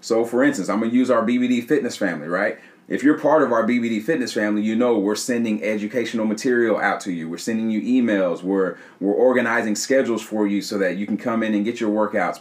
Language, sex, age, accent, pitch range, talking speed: English, male, 30-49, American, 105-125 Hz, 235 wpm